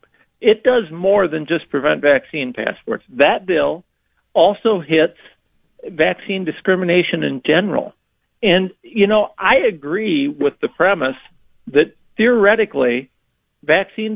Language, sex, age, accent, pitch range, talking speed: English, male, 50-69, American, 165-225 Hz, 115 wpm